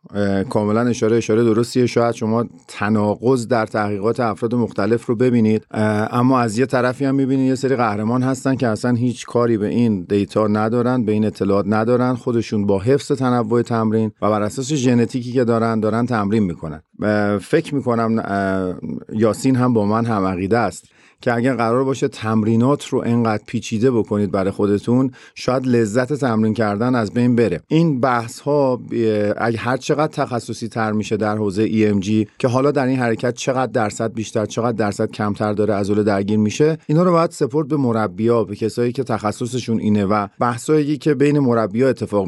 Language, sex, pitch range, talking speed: Persian, male, 110-130 Hz, 175 wpm